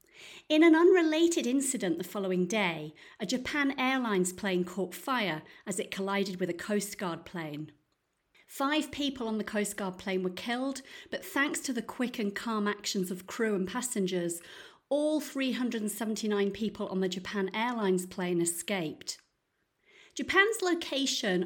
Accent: British